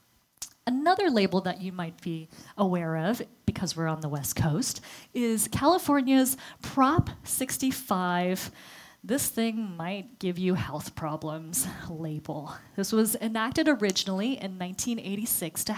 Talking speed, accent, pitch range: 125 wpm, American, 160-220 Hz